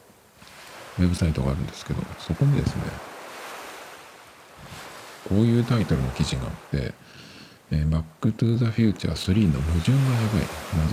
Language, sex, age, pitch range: Japanese, male, 50-69, 75-105 Hz